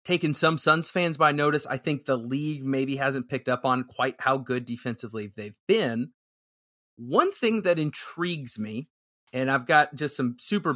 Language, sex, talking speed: English, male, 180 wpm